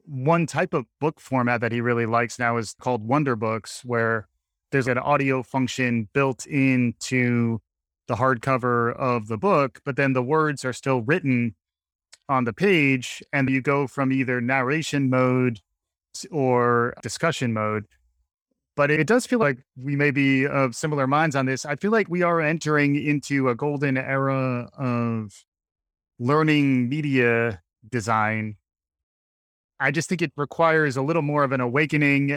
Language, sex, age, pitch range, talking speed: English, male, 30-49, 120-145 Hz, 160 wpm